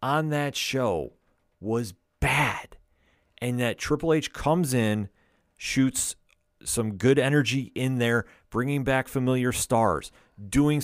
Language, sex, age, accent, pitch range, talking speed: English, male, 40-59, American, 110-140 Hz, 120 wpm